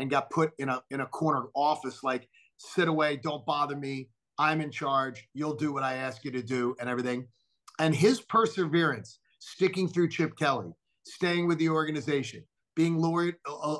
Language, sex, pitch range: English, male, 135-175 Hz